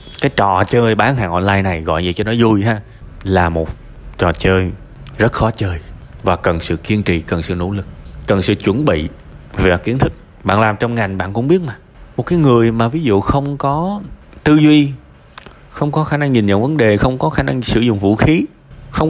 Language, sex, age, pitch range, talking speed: Vietnamese, male, 20-39, 100-145 Hz, 225 wpm